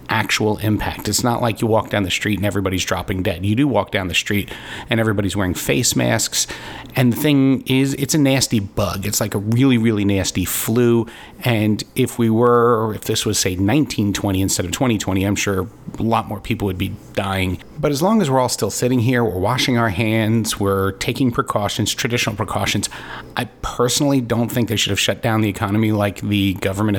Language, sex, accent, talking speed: English, male, American, 205 wpm